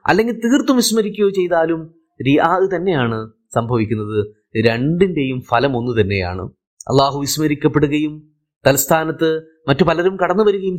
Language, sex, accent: Malayalam, male, native